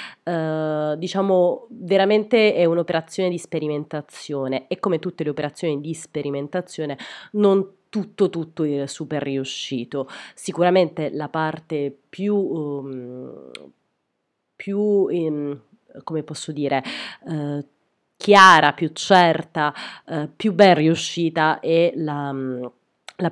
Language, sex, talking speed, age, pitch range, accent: Italian, female, 110 wpm, 30-49, 145-180 Hz, native